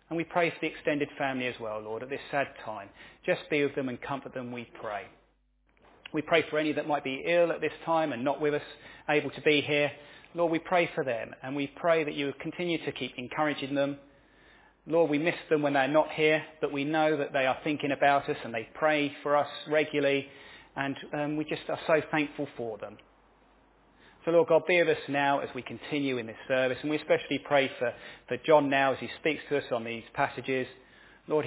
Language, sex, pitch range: English, male, 130-155 Hz